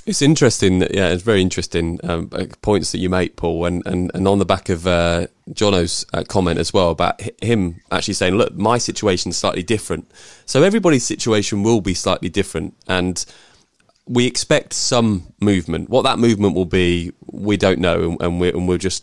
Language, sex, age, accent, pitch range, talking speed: English, male, 20-39, British, 90-110 Hz, 190 wpm